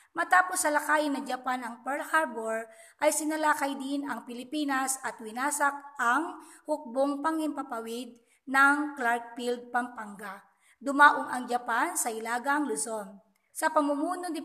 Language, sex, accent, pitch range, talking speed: Filipino, female, native, 240-310 Hz, 120 wpm